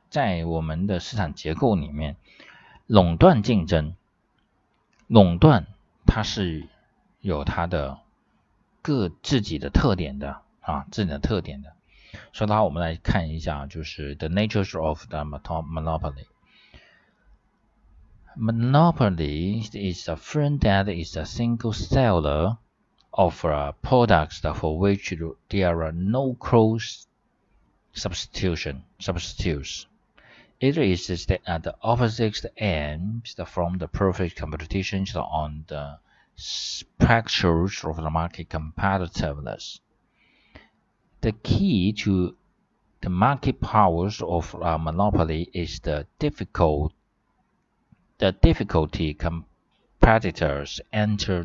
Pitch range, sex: 80-105 Hz, male